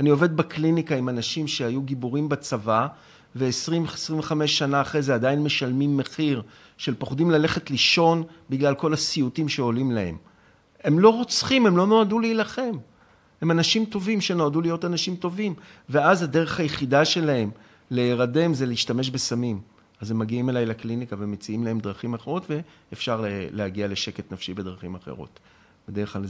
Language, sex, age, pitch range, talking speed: Hebrew, male, 40-59, 110-150 Hz, 145 wpm